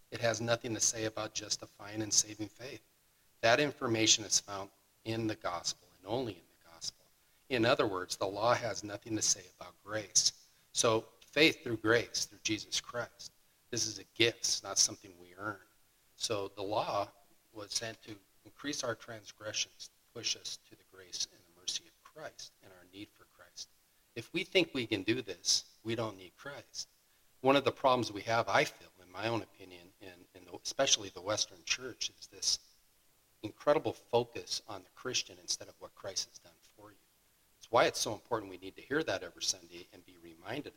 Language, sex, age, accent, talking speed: English, male, 40-59, American, 190 wpm